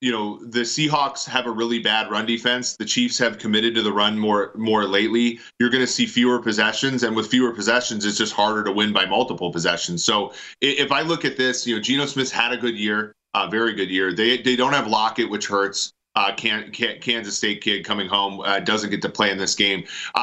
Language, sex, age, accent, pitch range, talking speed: English, male, 30-49, American, 105-125 Hz, 235 wpm